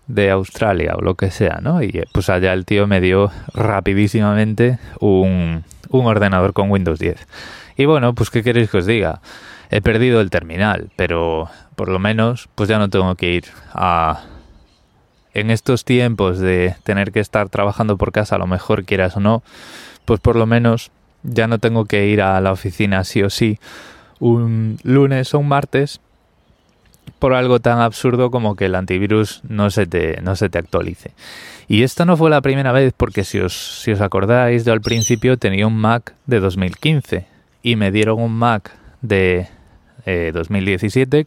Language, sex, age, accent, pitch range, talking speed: Spanish, male, 20-39, Spanish, 95-120 Hz, 180 wpm